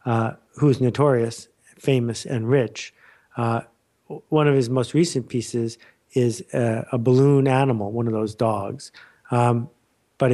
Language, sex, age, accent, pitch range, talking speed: English, male, 50-69, American, 120-145 Hz, 140 wpm